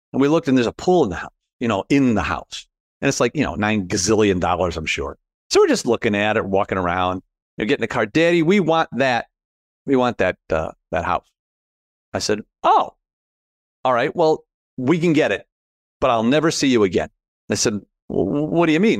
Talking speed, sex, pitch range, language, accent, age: 220 wpm, male, 105-150 Hz, English, American, 40-59